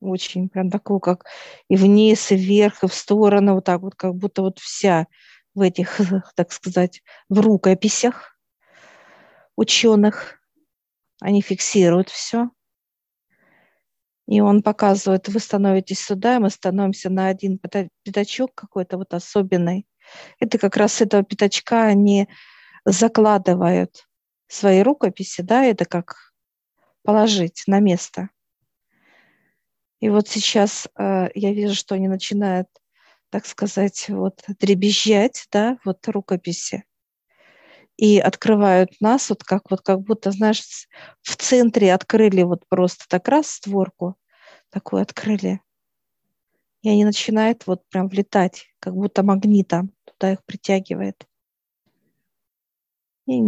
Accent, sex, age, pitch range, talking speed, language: native, female, 50-69, 185-210 Hz, 120 wpm, Russian